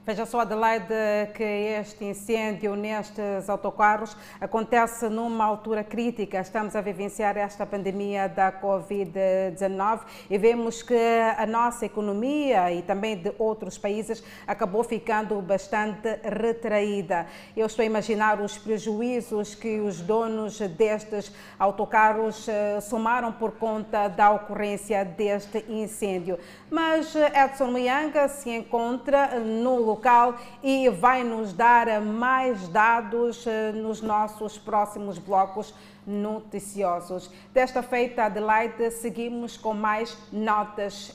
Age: 40-59